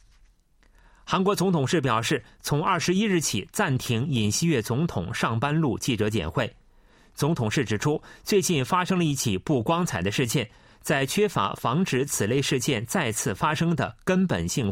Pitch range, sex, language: 110-170 Hz, male, Chinese